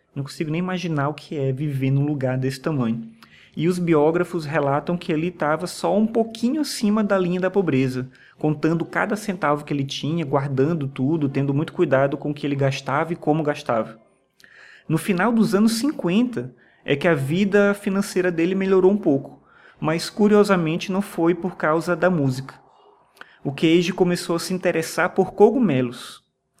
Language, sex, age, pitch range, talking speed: Portuguese, male, 20-39, 145-195 Hz, 170 wpm